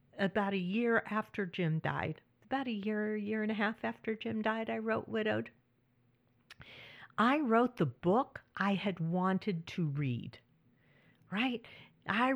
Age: 50-69